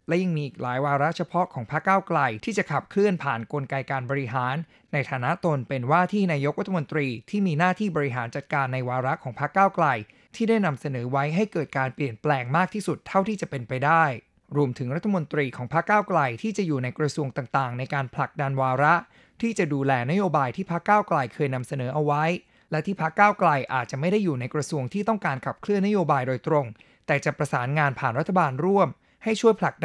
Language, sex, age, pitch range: Thai, male, 20-39, 135-180 Hz